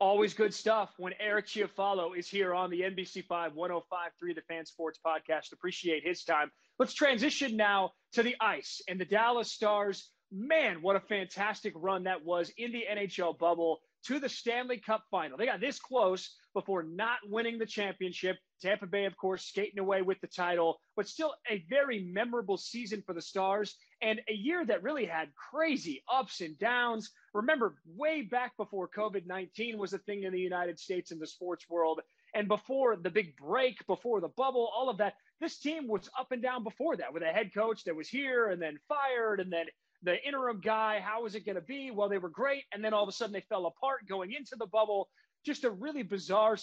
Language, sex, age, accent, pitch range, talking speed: English, male, 30-49, American, 185-235 Hz, 205 wpm